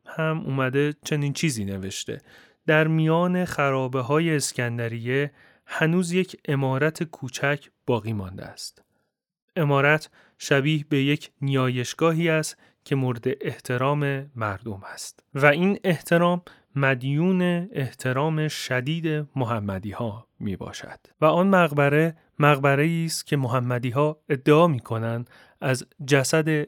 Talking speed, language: 115 wpm, Persian